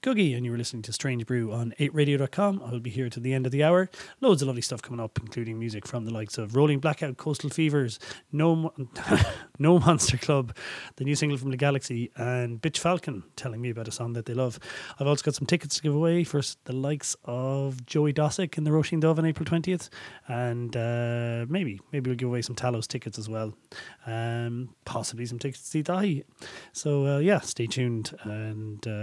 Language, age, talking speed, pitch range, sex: English, 30-49, 210 wpm, 120-150 Hz, male